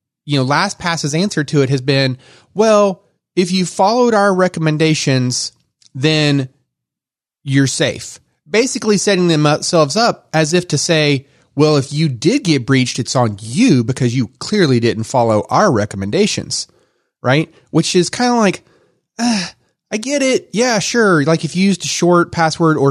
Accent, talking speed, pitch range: American, 160 wpm, 125-170 Hz